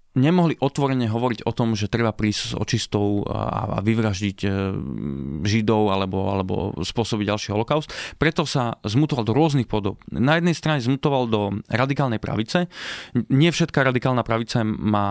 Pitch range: 105-130 Hz